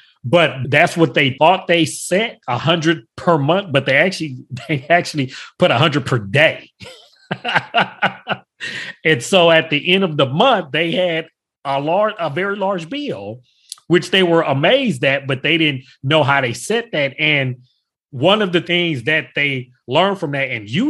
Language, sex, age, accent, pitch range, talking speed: English, male, 30-49, American, 135-175 Hz, 180 wpm